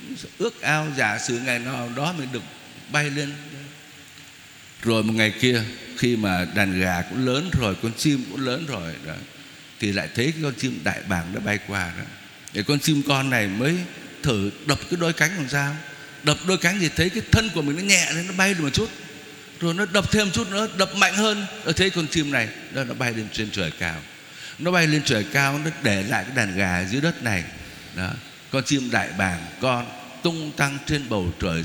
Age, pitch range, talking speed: 60-79, 120-170 Hz, 220 wpm